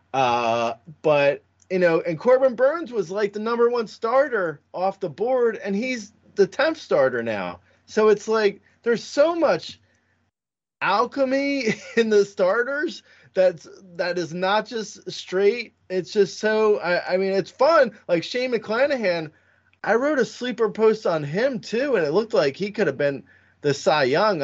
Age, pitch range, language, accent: 20-39, 165-250 Hz, English, American